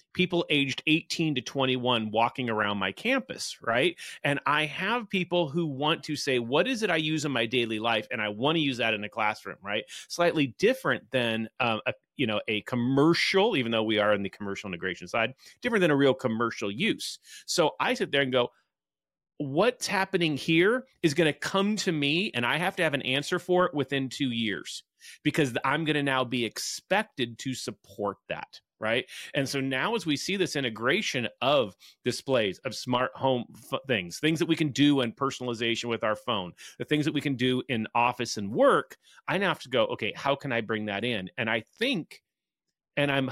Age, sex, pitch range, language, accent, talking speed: 30-49, male, 120-160 Hz, English, American, 205 wpm